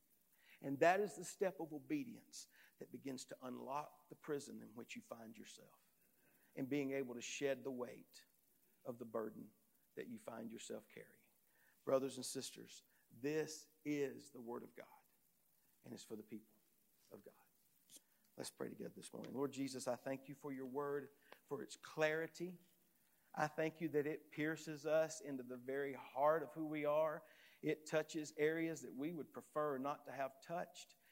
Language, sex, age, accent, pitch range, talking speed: English, male, 50-69, American, 130-155 Hz, 175 wpm